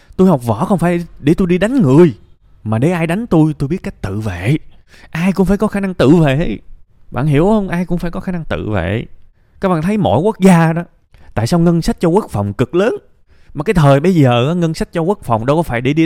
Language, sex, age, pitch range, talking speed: Vietnamese, male, 20-39, 100-165 Hz, 260 wpm